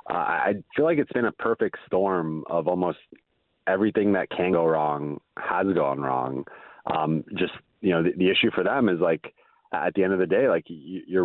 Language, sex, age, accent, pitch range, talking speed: English, male, 30-49, American, 80-105 Hz, 205 wpm